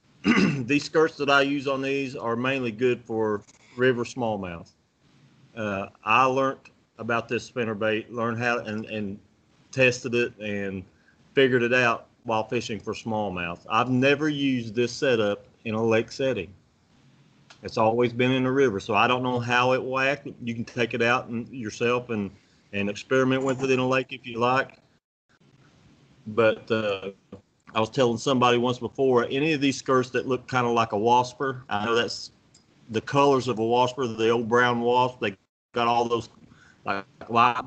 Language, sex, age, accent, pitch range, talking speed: English, male, 40-59, American, 110-130 Hz, 170 wpm